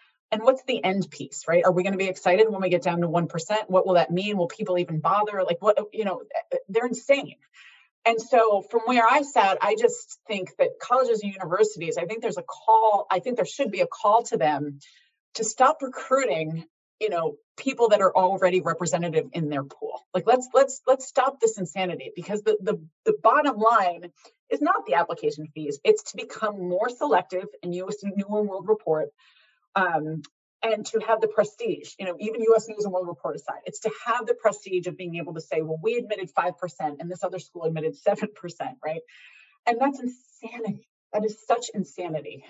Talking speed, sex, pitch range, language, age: 205 wpm, female, 180-245 Hz, English, 30-49